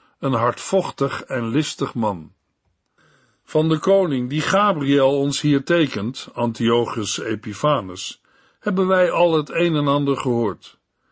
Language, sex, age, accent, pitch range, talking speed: Dutch, male, 50-69, Dutch, 130-180 Hz, 125 wpm